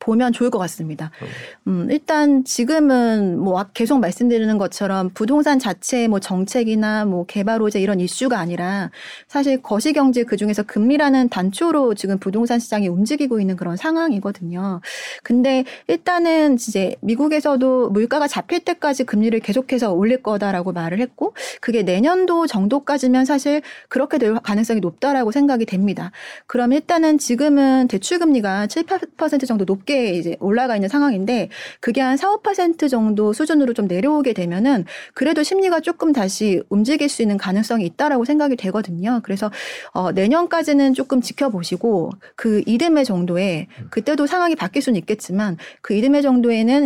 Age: 30-49